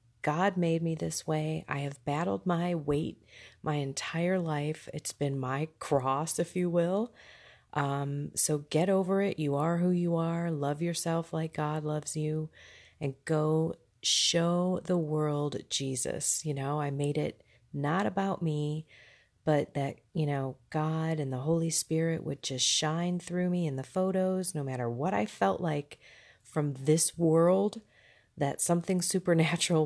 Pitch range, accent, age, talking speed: 140-170 Hz, American, 30-49, 160 wpm